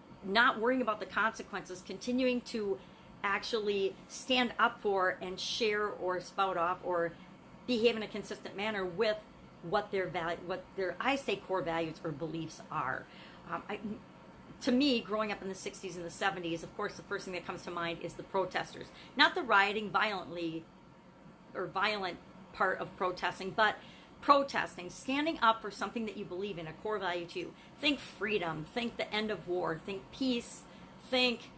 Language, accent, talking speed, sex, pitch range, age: English, American, 175 wpm, female, 175-220 Hz, 40-59